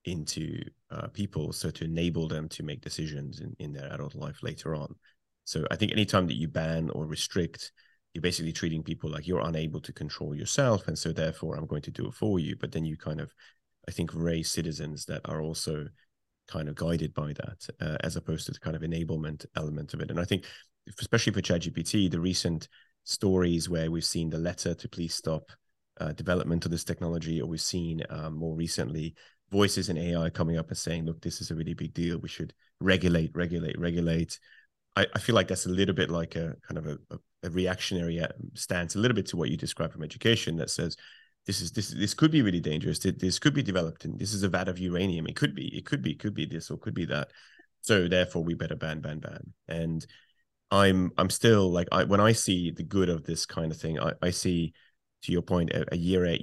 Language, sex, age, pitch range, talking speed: English, male, 30-49, 80-95 Hz, 230 wpm